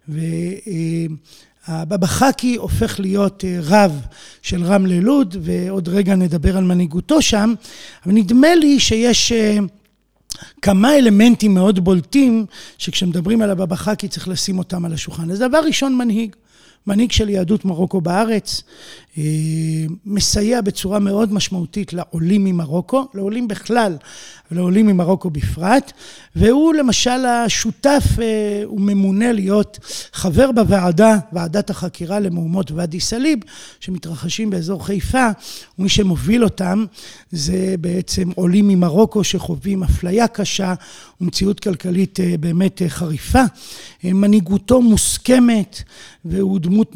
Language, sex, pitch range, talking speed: Hebrew, male, 180-220 Hz, 110 wpm